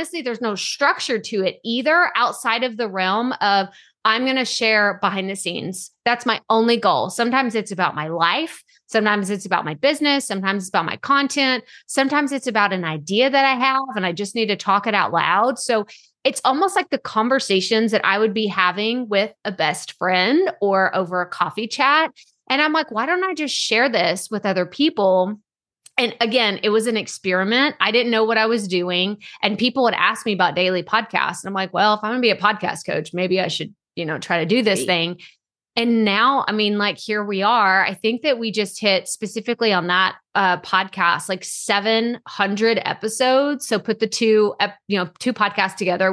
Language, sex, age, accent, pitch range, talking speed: English, female, 30-49, American, 190-245 Hz, 210 wpm